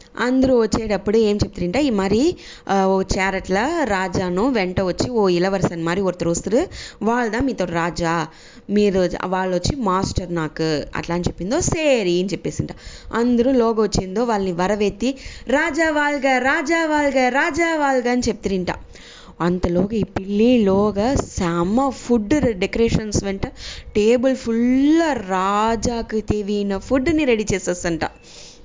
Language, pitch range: English, 185-245 Hz